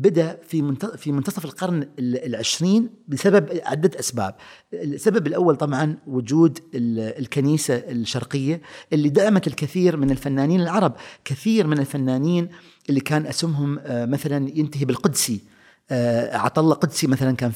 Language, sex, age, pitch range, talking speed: Arabic, male, 40-59, 130-170 Hz, 115 wpm